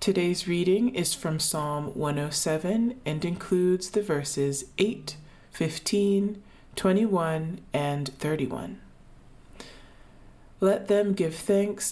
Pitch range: 150-200 Hz